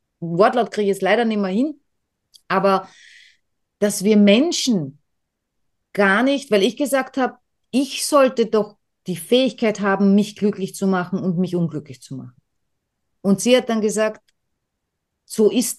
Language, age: German, 30-49